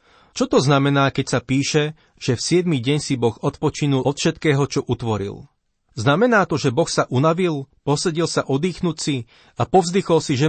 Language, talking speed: Slovak, 170 wpm